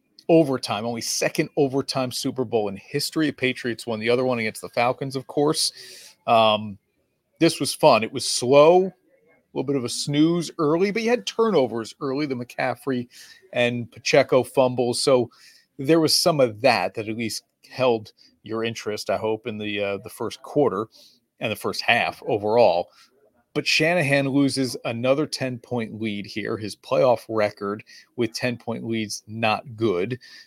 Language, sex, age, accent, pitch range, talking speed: English, male, 30-49, American, 105-135 Hz, 165 wpm